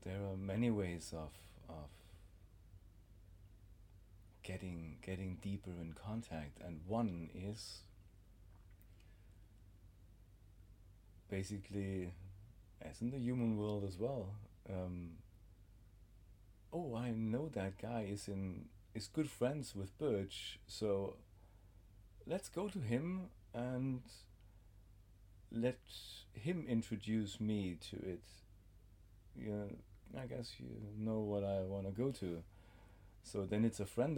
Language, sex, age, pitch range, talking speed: English, male, 40-59, 95-105 Hz, 110 wpm